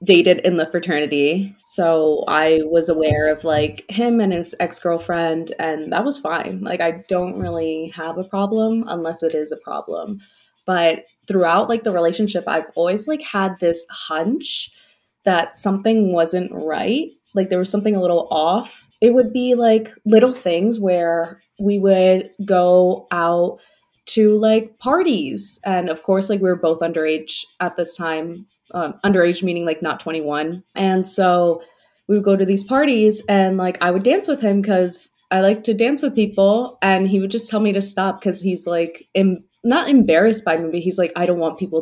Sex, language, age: female, English, 20-39